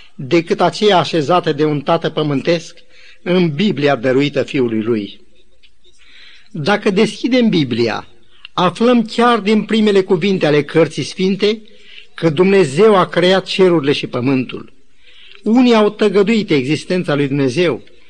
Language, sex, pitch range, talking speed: Romanian, male, 150-205 Hz, 120 wpm